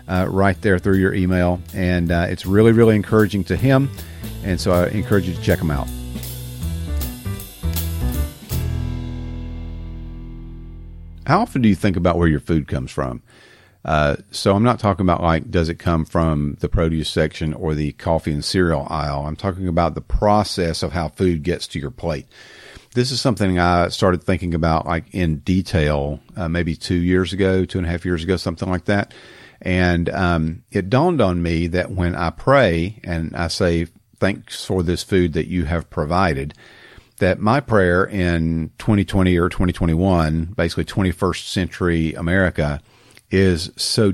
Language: English